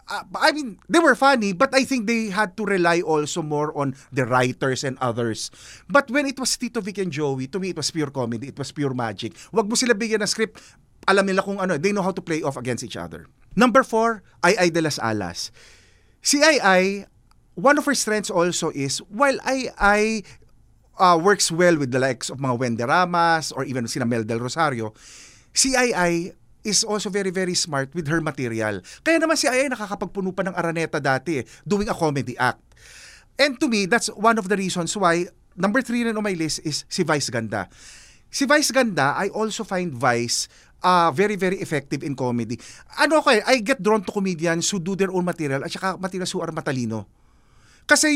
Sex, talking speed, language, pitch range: male, 200 wpm, Filipino, 135-220 Hz